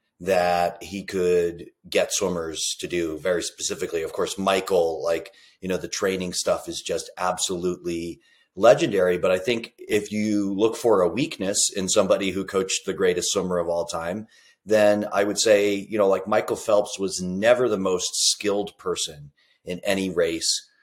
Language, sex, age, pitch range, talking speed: English, male, 30-49, 90-110 Hz, 170 wpm